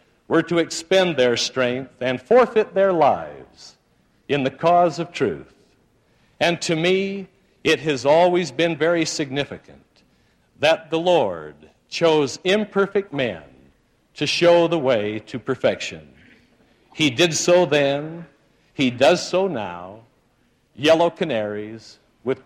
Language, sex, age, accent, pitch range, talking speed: English, male, 60-79, American, 130-170 Hz, 125 wpm